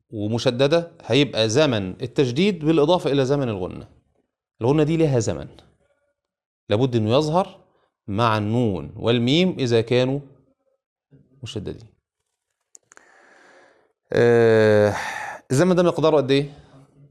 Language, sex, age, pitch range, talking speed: Arabic, male, 30-49, 115-155 Hz, 95 wpm